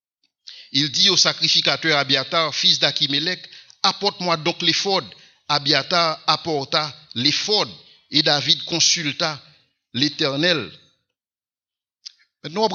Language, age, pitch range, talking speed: English, 60-79, 140-170 Hz, 90 wpm